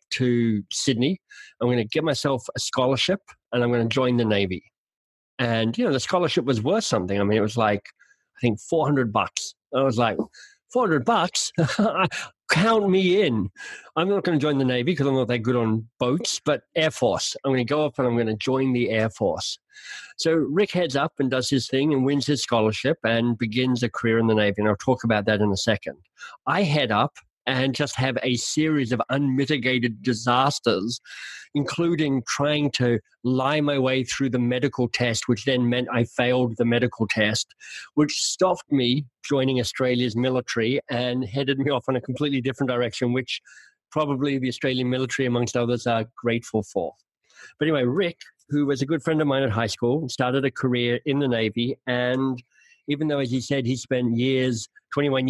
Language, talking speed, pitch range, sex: English, 195 wpm, 120-145 Hz, male